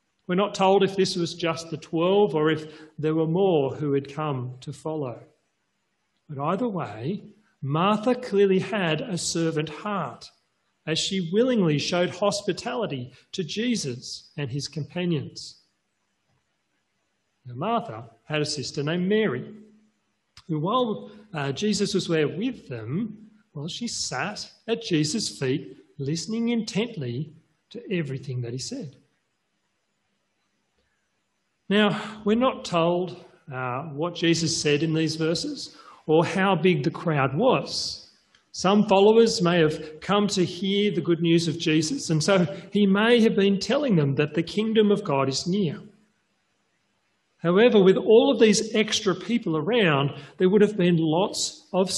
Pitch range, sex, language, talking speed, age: 150-205 Hz, male, English, 140 wpm, 40-59